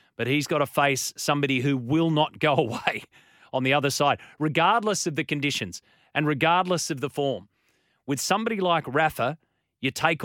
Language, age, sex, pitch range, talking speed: English, 30-49, male, 135-165 Hz, 175 wpm